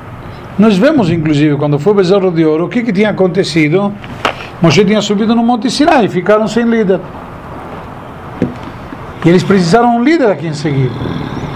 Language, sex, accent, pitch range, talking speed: Portuguese, male, Italian, 145-205 Hz, 165 wpm